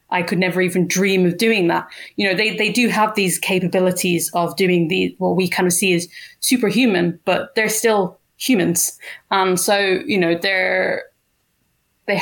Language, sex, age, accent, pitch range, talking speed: English, female, 20-39, British, 175-195 Hz, 180 wpm